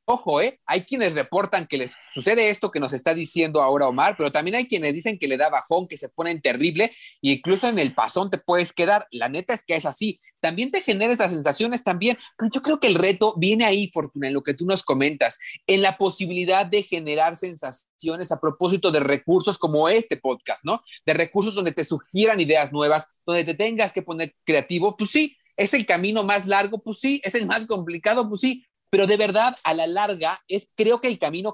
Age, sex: 30-49, male